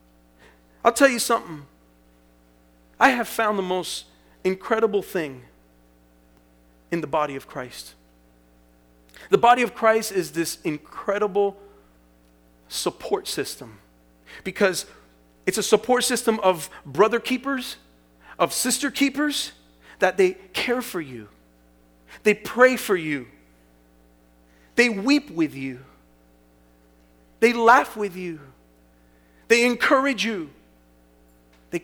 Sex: male